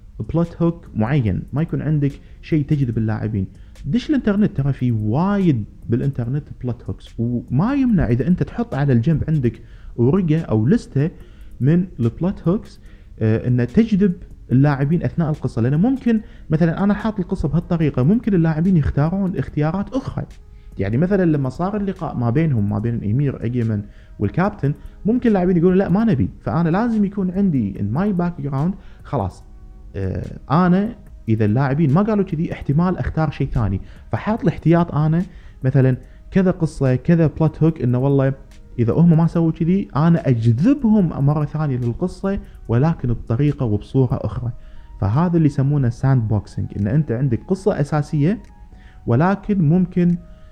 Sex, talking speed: male, 145 wpm